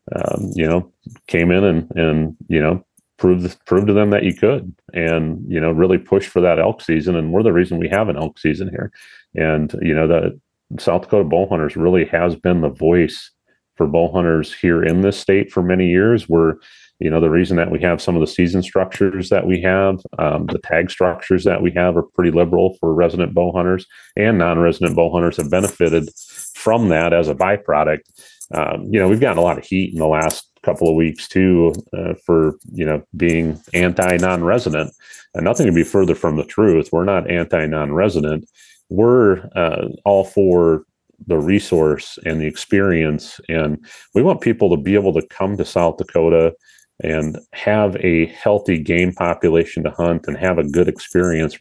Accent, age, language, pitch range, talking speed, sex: American, 30-49, English, 80-90 Hz, 200 wpm, male